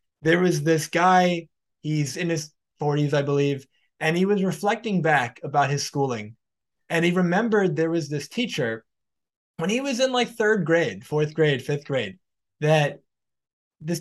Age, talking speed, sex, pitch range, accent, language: 20-39, 165 wpm, male, 140-170 Hz, American, English